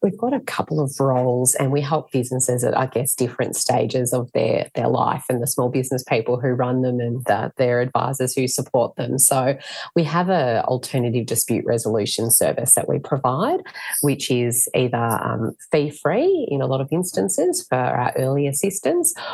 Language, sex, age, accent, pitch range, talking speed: English, female, 30-49, Australian, 120-140 Hz, 180 wpm